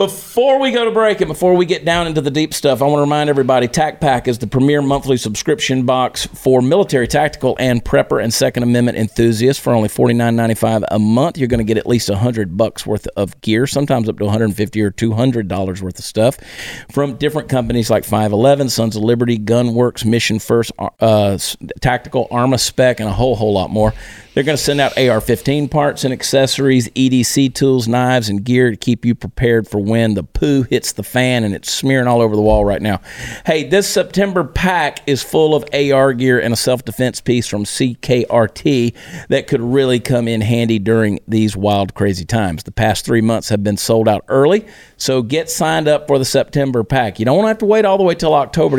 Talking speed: 210 wpm